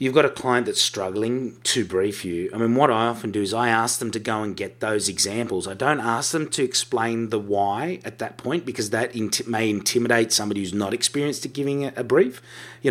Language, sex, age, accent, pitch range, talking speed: English, male, 30-49, Australian, 105-125 Hz, 230 wpm